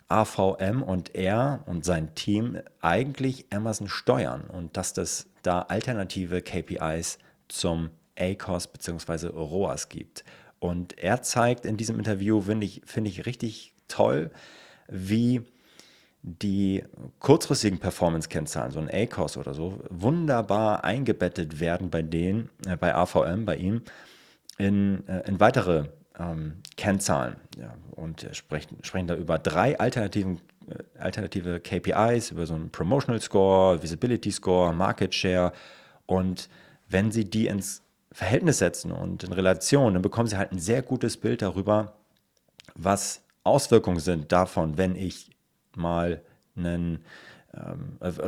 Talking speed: 125 wpm